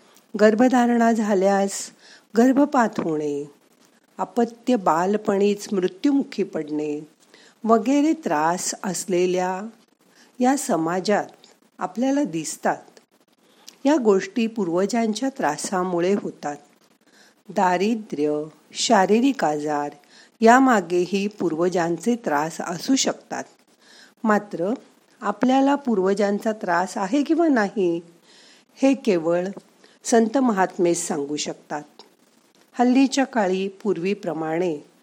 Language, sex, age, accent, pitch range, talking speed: Marathi, female, 50-69, native, 180-245 Hz, 75 wpm